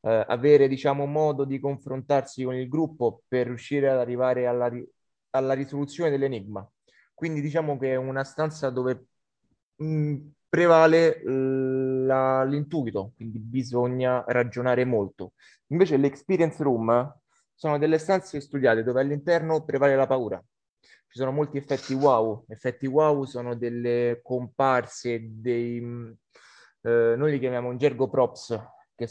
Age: 20-39